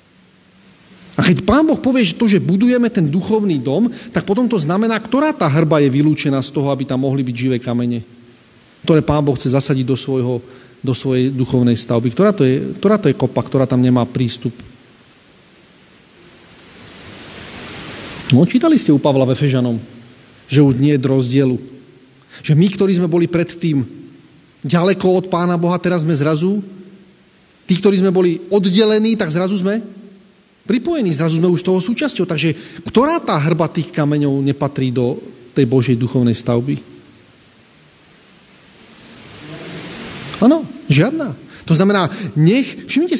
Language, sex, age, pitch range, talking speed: Slovak, male, 30-49, 130-205 Hz, 145 wpm